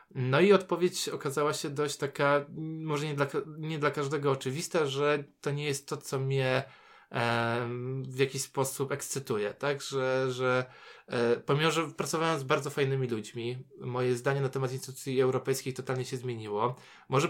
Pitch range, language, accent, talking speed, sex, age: 130-155 Hz, Polish, native, 165 wpm, male, 20-39